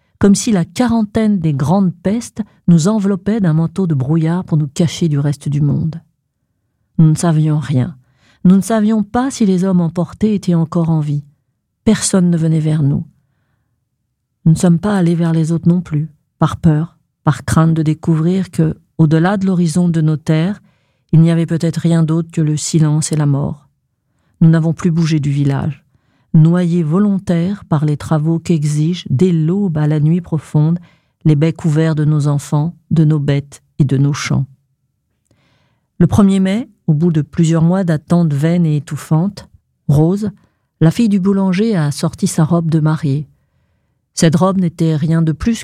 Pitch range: 150-180 Hz